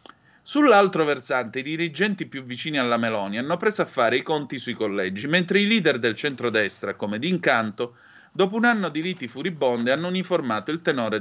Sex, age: male, 30-49